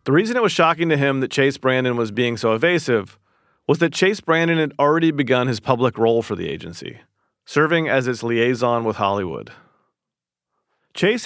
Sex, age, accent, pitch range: male, 40-59, American, 110-165 Hz